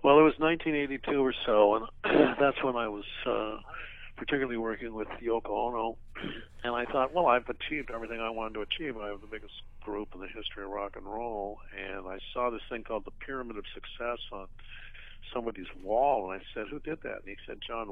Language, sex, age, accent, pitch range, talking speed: English, male, 60-79, American, 105-145 Hz, 210 wpm